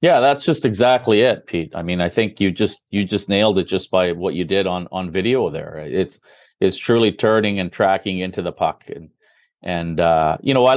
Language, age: English, 40-59